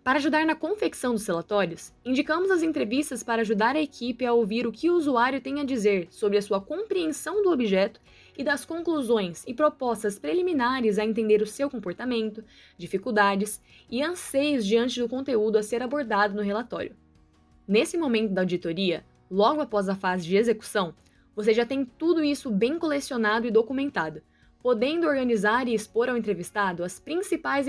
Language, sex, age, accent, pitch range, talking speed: Portuguese, female, 10-29, Brazilian, 210-285 Hz, 165 wpm